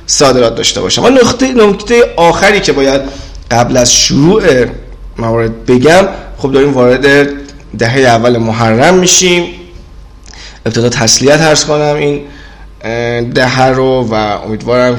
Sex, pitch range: male, 115-145 Hz